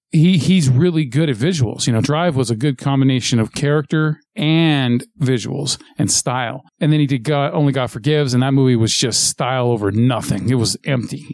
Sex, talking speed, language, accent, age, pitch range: male, 200 wpm, English, American, 40-59, 115-150 Hz